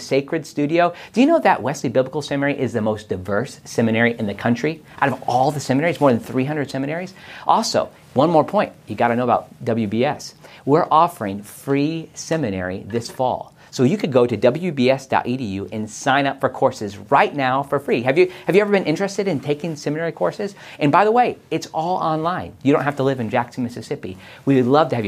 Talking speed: 210 wpm